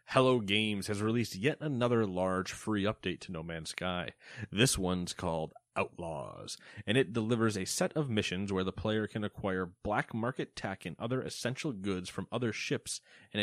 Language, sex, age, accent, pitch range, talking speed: English, male, 30-49, American, 95-115 Hz, 180 wpm